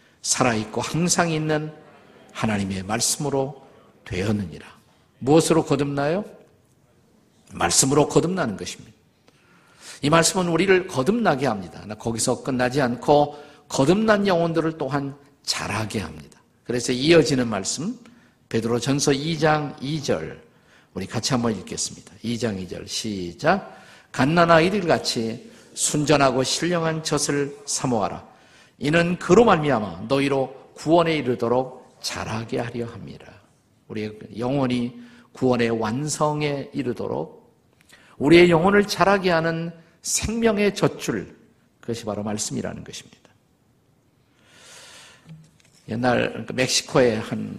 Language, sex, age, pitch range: Korean, male, 50-69, 115-155 Hz